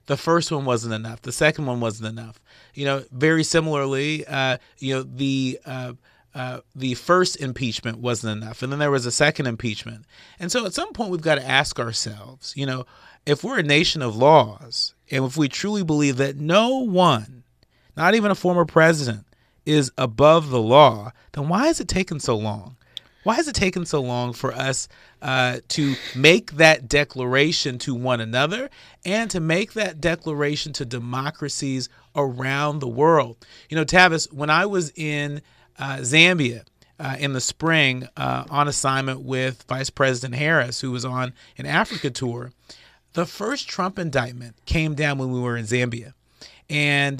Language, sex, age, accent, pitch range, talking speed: English, male, 30-49, American, 125-155 Hz, 175 wpm